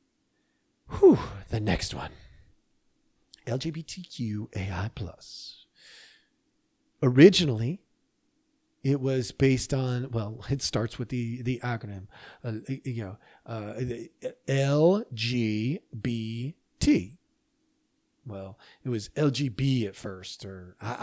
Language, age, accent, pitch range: English, 40-59, American, 115-175 Hz